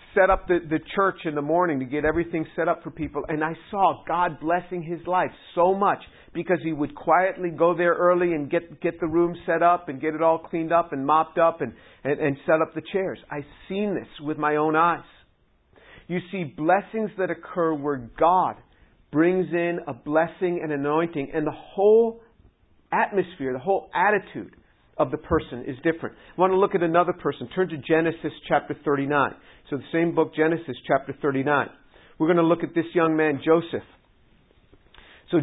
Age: 50-69